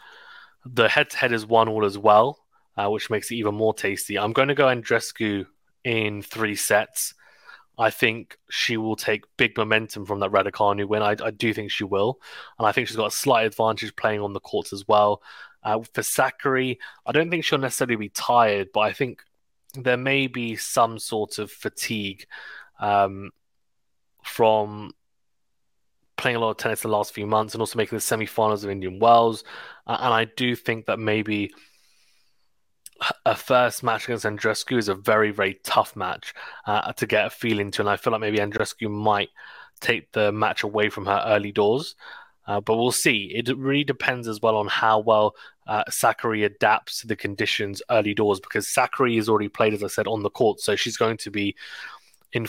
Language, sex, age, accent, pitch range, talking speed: English, male, 20-39, British, 105-115 Hz, 190 wpm